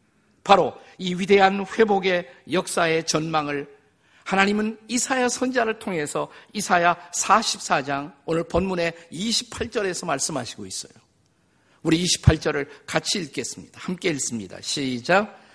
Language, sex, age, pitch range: Korean, male, 50-69, 160-220 Hz